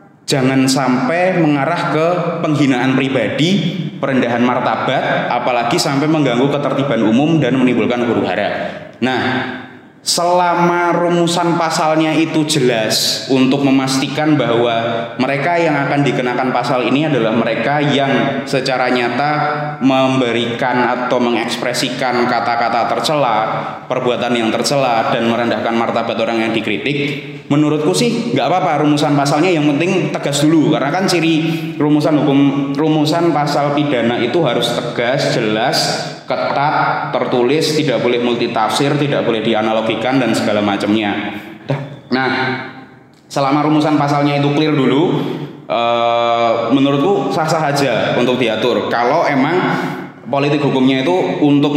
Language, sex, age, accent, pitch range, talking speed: Indonesian, male, 20-39, native, 120-150 Hz, 115 wpm